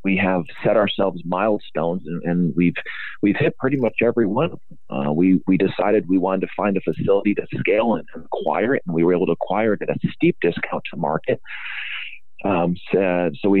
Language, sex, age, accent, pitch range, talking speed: English, male, 50-69, American, 85-100 Hz, 205 wpm